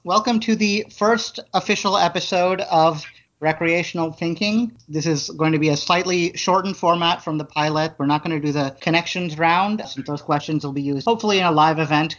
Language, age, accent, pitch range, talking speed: English, 30-49, American, 145-180 Hz, 195 wpm